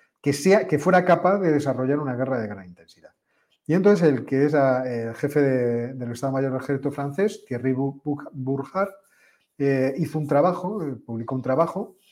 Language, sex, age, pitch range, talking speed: Spanish, male, 40-59, 130-155 Hz, 185 wpm